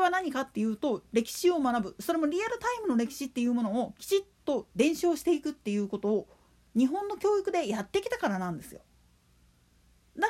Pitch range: 220-345 Hz